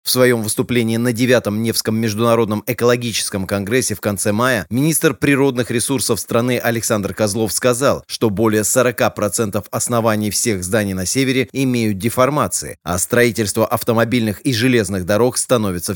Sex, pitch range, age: male, 110-130 Hz, 30-49